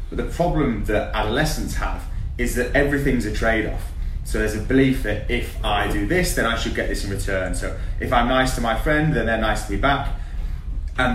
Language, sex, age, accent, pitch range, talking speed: English, male, 30-49, British, 100-125 Hz, 220 wpm